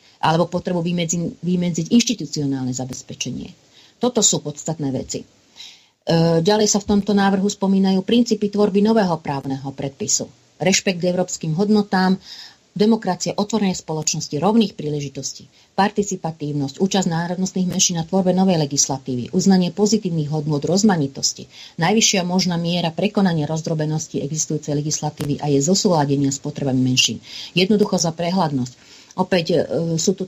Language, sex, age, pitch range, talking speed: Slovak, female, 40-59, 150-190 Hz, 120 wpm